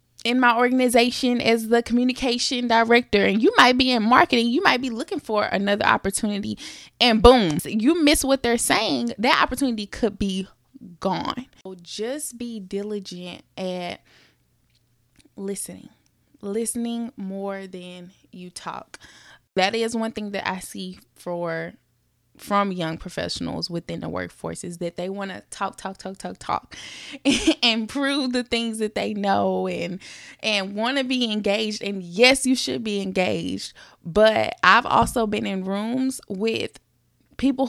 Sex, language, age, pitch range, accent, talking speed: female, English, 20-39, 185-245 Hz, American, 150 wpm